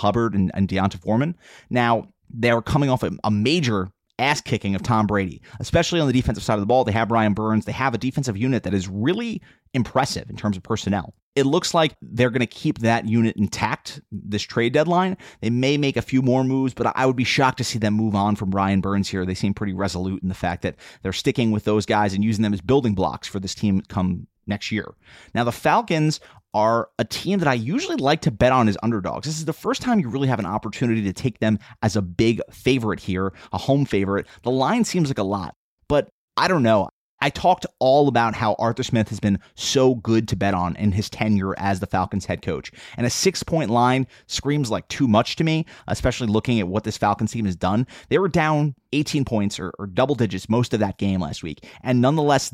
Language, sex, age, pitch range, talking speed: English, male, 30-49, 100-130 Hz, 235 wpm